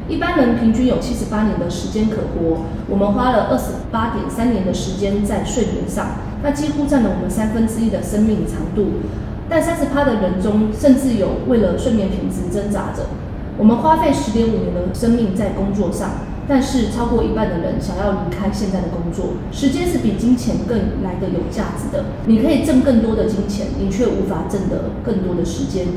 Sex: female